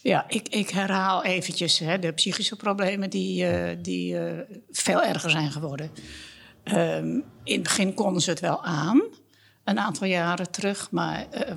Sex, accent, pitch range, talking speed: female, Dutch, 170-220 Hz, 165 wpm